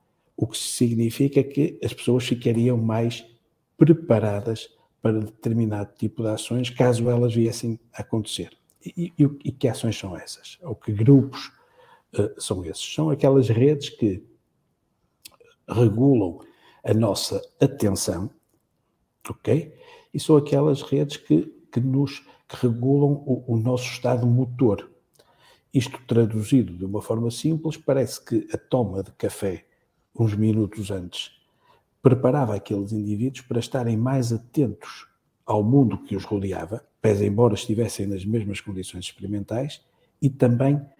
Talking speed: 125 wpm